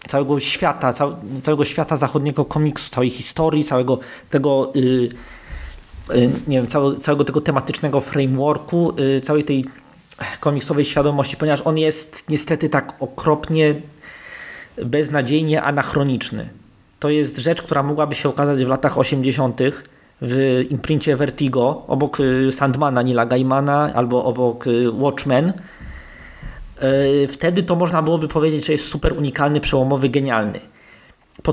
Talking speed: 125 wpm